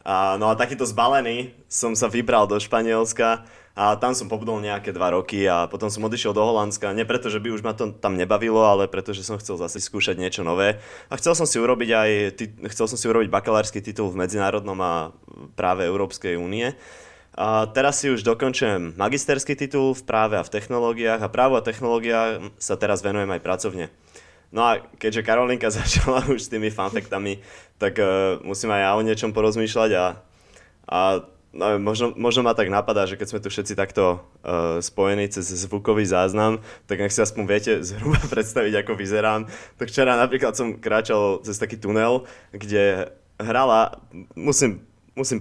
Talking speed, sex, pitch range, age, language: 180 wpm, male, 100-115 Hz, 20-39, Slovak